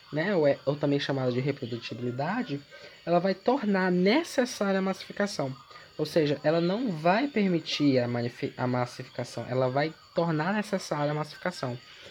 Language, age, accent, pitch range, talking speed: English, 10-29, Brazilian, 130-170 Hz, 150 wpm